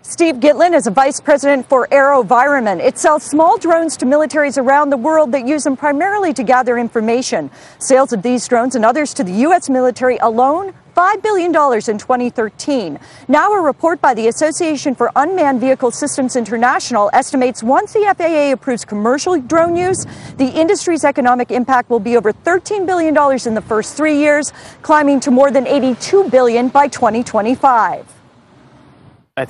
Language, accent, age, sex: Korean, American, 40-59, female